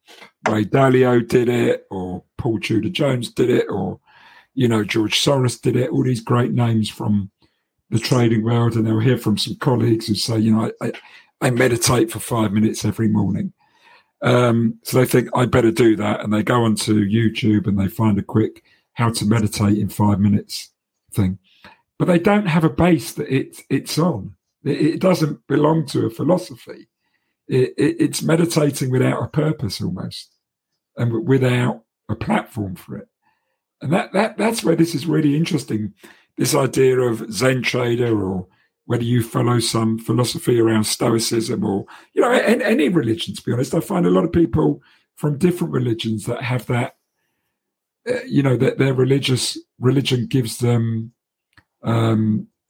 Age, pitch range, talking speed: 50-69, 110-135 Hz, 175 wpm